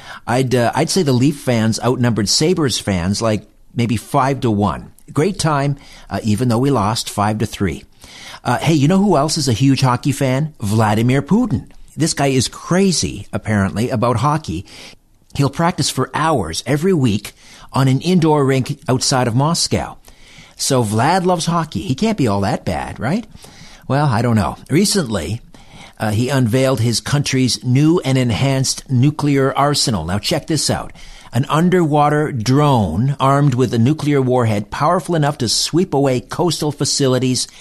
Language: English